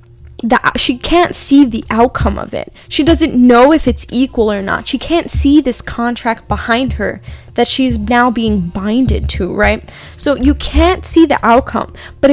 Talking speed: 175 wpm